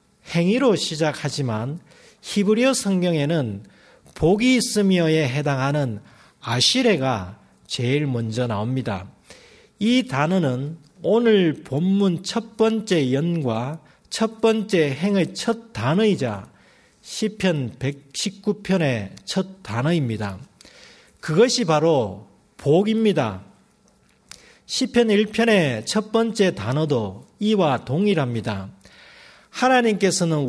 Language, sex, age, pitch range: Korean, male, 40-59, 130-210 Hz